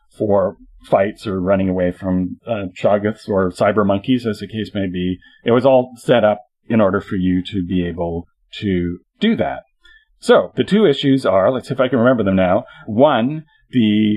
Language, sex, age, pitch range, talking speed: English, male, 40-59, 95-120 Hz, 195 wpm